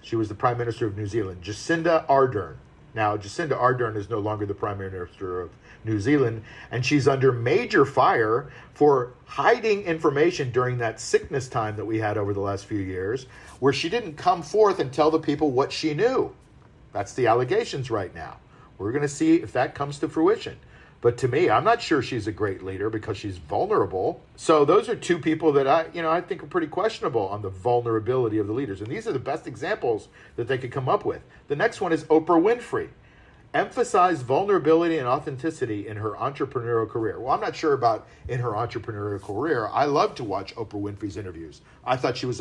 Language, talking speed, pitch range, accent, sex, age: English, 210 wpm, 105-155 Hz, American, male, 50-69